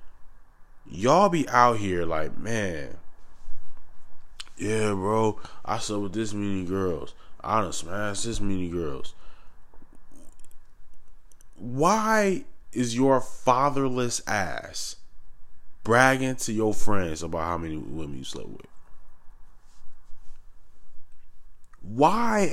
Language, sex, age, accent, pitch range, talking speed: English, male, 20-39, American, 90-120 Hz, 100 wpm